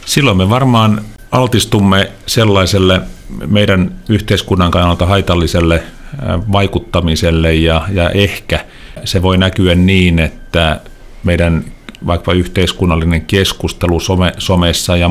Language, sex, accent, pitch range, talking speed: Finnish, male, native, 85-95 Hz, 95 wpm